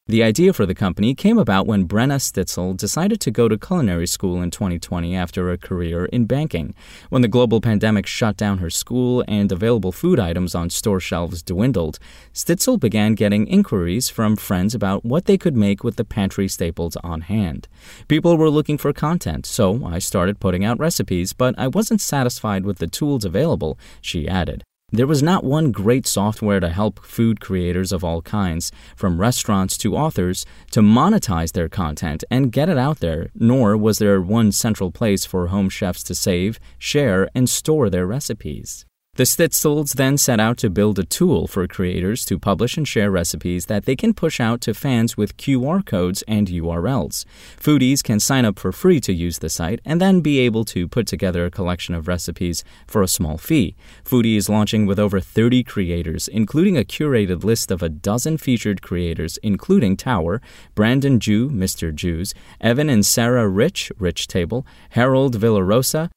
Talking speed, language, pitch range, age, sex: 185 wpm, English, 90-125 Hz, 30-49, male